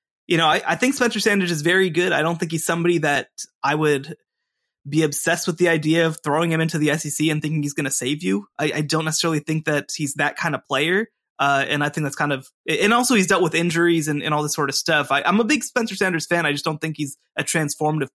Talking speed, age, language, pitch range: 265 wpm, 20-39, English, 145-190 Hz